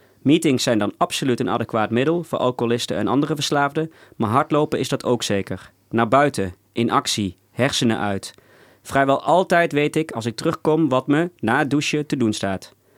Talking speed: 180 wpm